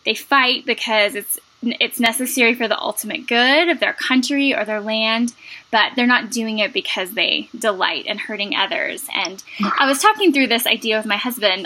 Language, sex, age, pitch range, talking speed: English, female, 10-29, 205-280 Hz, 190 wpm